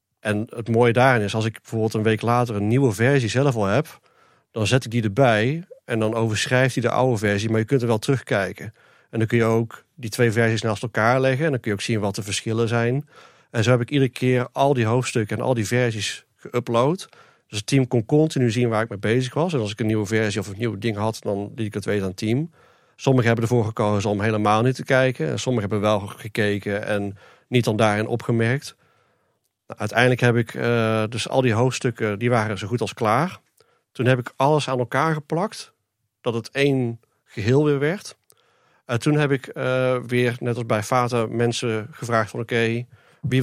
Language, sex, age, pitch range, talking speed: Dutch, male, 40-59, 110-130 Hz, 225 wpm